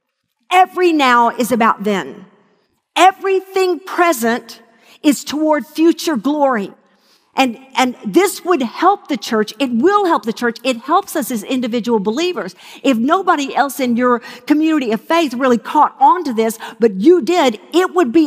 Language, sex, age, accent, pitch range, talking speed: English, female, 50-69, American, 230-325 Hz, 160 wpm